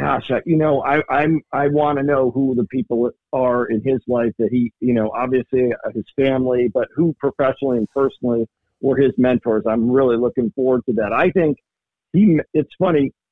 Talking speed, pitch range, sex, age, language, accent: 190 wpm, 120-145 Hz, male, 50-69, English, American